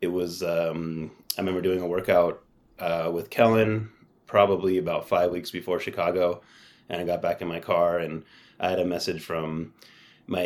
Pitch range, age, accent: 85-95 Hz, 30-49, American